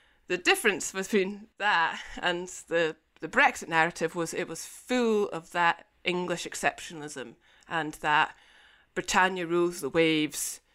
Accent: British